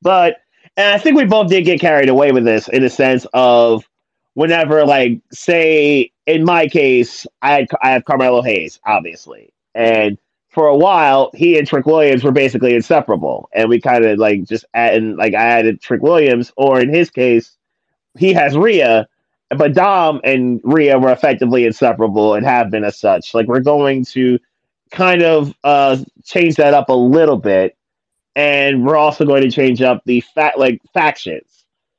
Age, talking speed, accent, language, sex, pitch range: 30-49, 180 wpm, American, English, male, 115-150 Hz